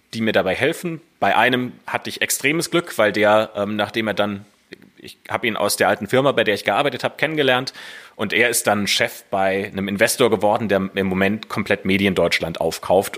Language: German